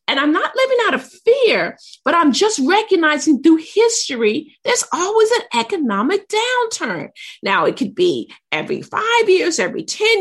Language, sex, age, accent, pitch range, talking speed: English, female, 50-69, American, 240-400 Hz, 160 wpm